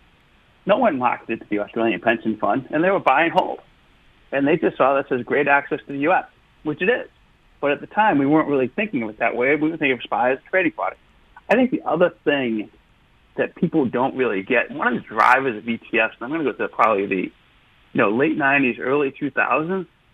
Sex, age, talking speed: male, 40-59, 230 wpm